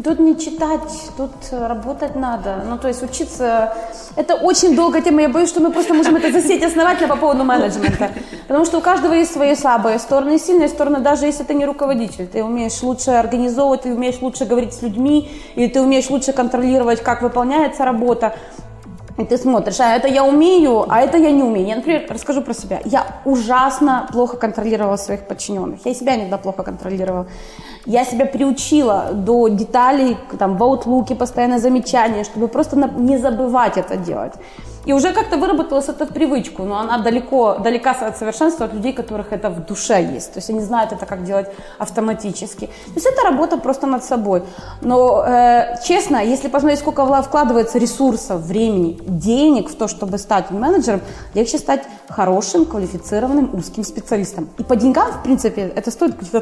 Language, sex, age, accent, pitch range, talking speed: Russian, female, 20-39, native, 220-285 Hz, 175 wpm